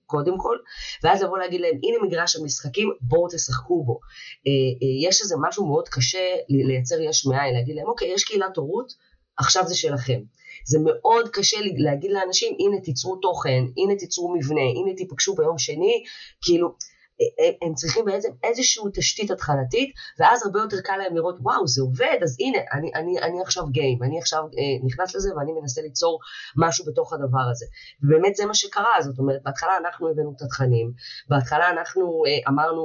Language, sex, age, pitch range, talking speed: Hebrew, female, 20-39, 135-200 Hz, 180 wpm